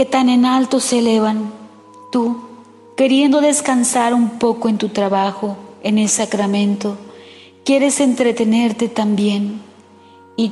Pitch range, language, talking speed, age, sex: 210-245 Hz, Spanish, 120 wpm, 40-59, female